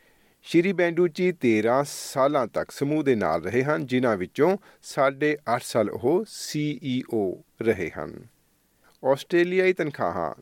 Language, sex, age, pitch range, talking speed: Punjabi, male, 40-59, 110-155 Hz, 115 wpm